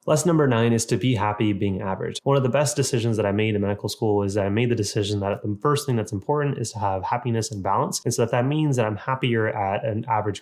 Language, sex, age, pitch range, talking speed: English, male, 20-39, 105-125 Hz, 280 wpm